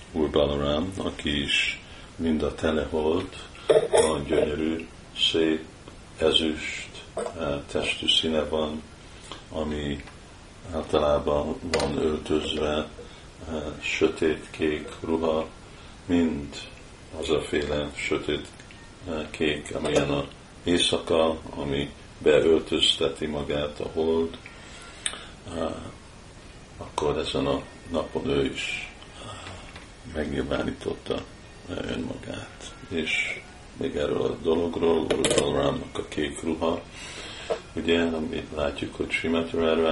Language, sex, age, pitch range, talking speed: Hungarian, male, 50-69, 75-85 Hz, 85 wpm